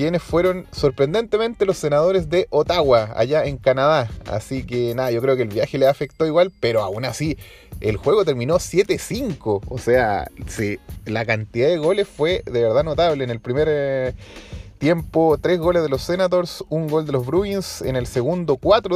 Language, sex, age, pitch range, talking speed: Spanish, male, 30-49, 125-170 Hz, 185 wpm